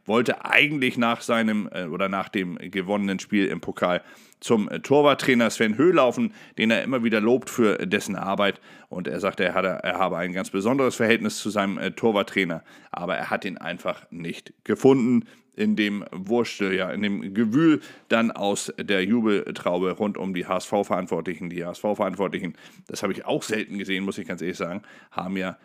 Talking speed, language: 175 wpm, German